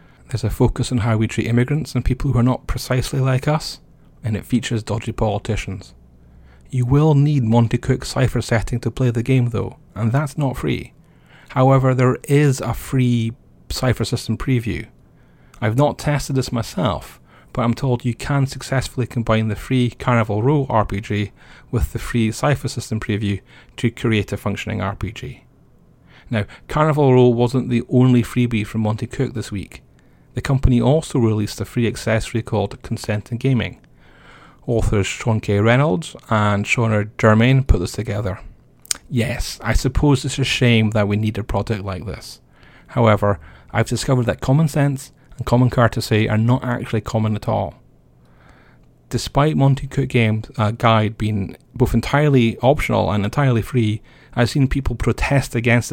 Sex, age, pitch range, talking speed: male, 30-49, 110-130 Hz, 165 wpm